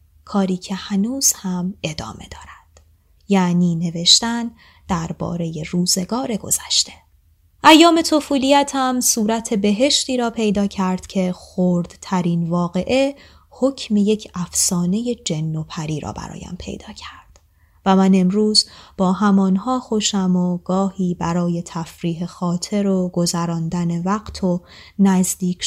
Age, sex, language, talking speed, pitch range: 20-39, female, Persian, 110 wpm, 175-230 Hz